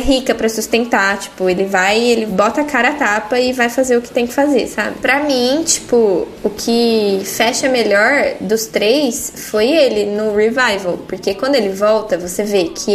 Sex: female